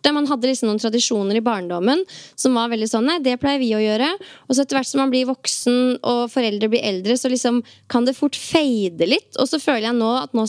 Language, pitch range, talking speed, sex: English, 225-265 Hz, 230 wpm, female